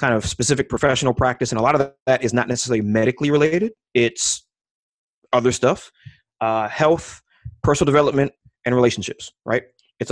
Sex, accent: male, American